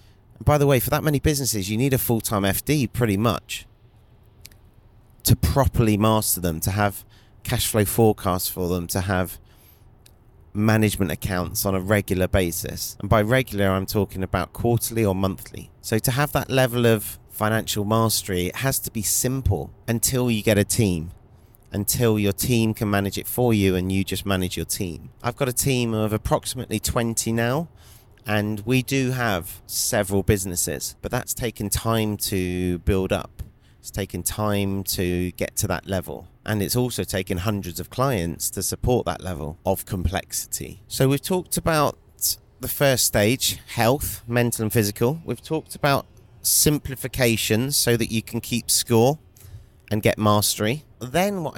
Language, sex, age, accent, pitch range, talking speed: English, male, 30-49, British, 95-120 Hz, 165 wpm